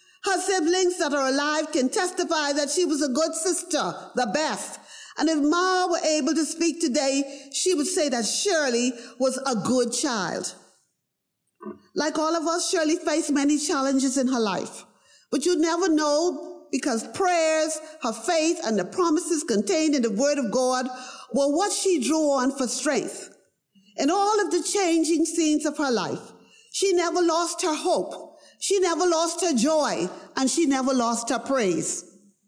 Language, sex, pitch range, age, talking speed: English, female, 270-340 Hz, 50-69, 170 wpm